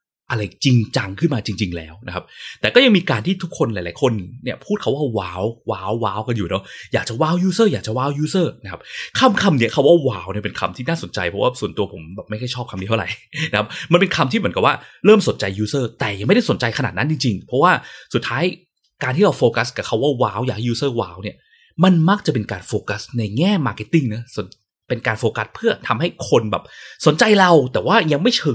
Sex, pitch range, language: male, 105-165 Hz, Thai